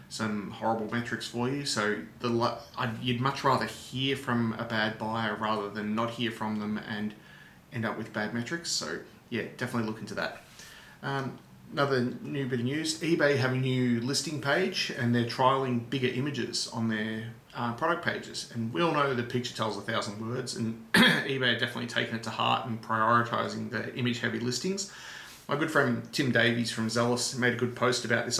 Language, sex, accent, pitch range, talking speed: English, male, Australian, 110-125 Hz, 195 wpm